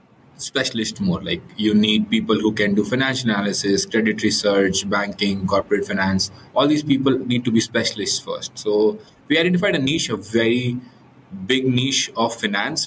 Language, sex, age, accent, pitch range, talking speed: English, male, 20-39, Indian, 105-130 Hz, 165 wpm